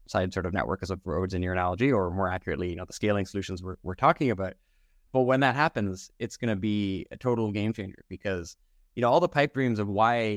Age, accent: 20-39, American